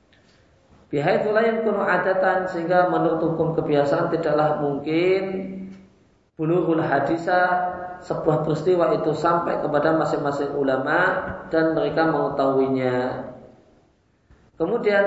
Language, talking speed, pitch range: Indonesian, 90 wpm, 135-170 Hz